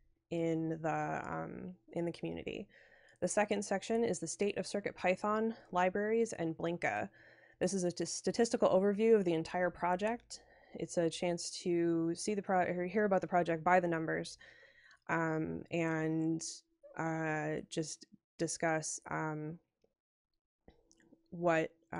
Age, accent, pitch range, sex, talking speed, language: 20-39, American, 165-190 Hz, female, 135 wpm, English